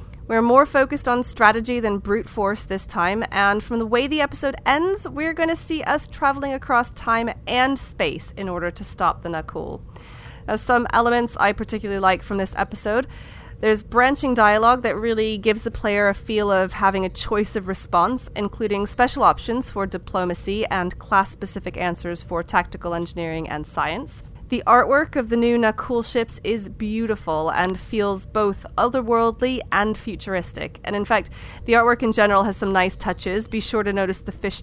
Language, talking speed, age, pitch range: English, 175 wpm, 30-49, 190-235 Hz